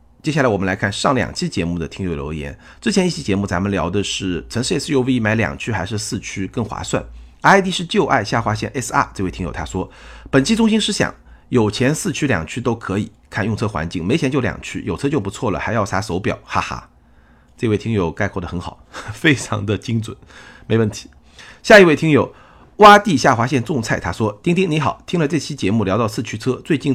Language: Chinese